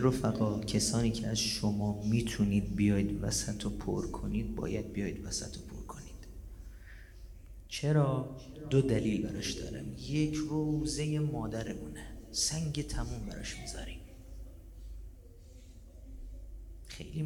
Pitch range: 90-125 Hz